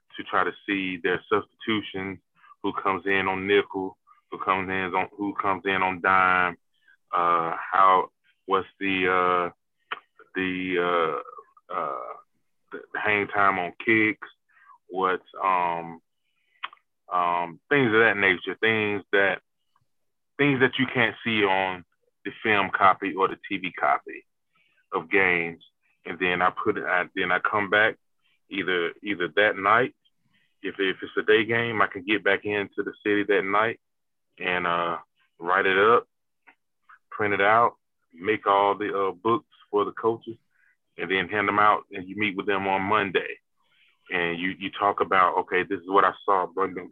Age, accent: 20-39, American